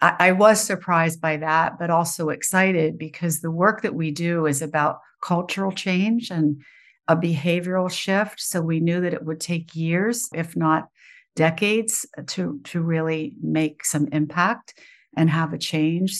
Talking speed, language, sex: 160 wpm, English, female